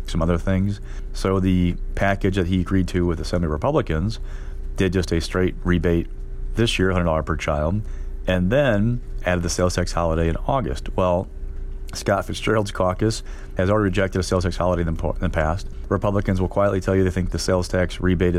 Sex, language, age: male, English, 40-59